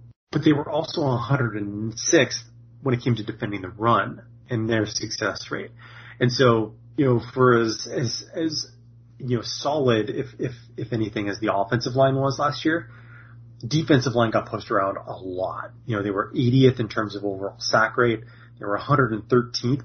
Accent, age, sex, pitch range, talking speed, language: American, 30-49, male, 110-125 Hz, 180 wpm, English